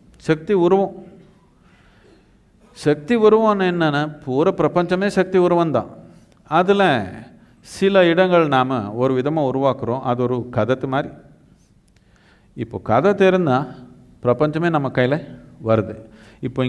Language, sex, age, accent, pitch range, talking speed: Tamil, male, 50-69, native, 120-175 Hz, 100 wpm